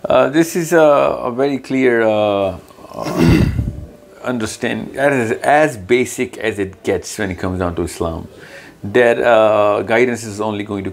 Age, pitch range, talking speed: 50-69, 95-115 Hz, 155 wpm